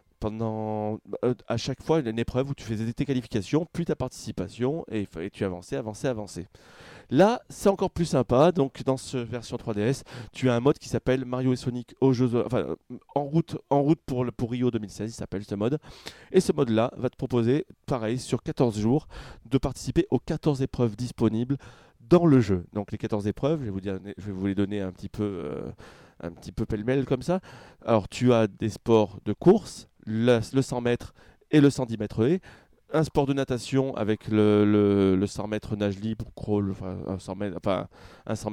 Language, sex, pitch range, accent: French, male, 110-135 Hz, French